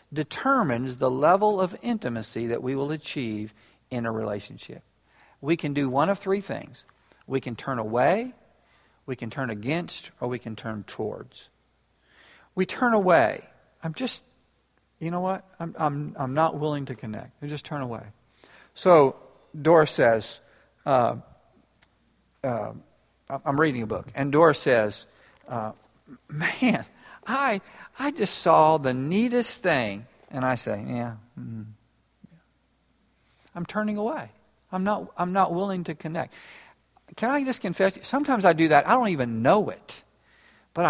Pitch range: 120-185 Hz